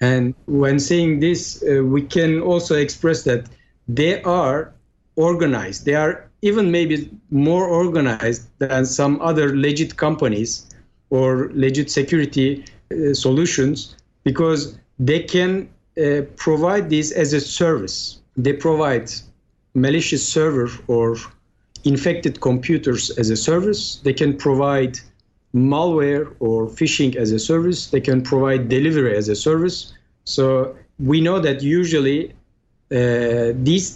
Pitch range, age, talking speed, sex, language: 125-160 Hz, 50-69, 125 wpm, male, English